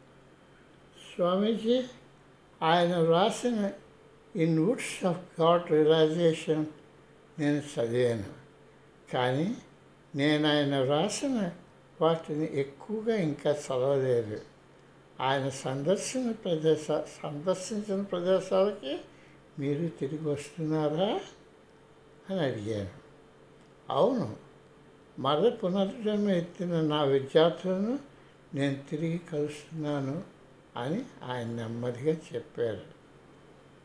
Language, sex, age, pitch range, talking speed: Telugu, male, 60-79, 140-185 Hz, 75 wpm